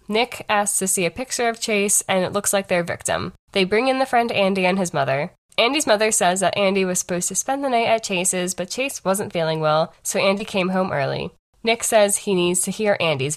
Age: 10-29